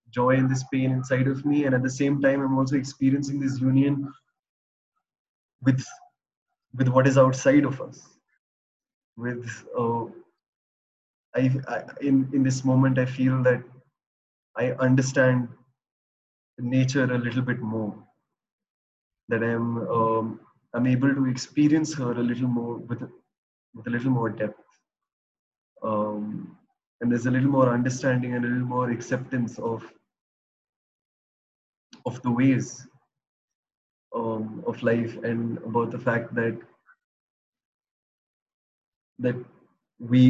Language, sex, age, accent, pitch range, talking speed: English, male, 20-39, Indian, 120-135 Hz, 125 wpm